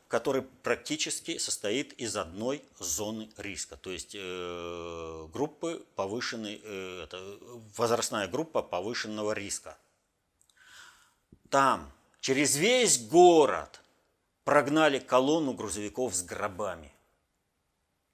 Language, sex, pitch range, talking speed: Russian, male, 105-160 Hz, 80 wpm